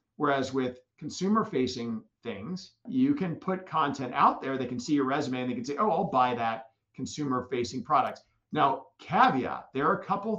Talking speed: 190 wpm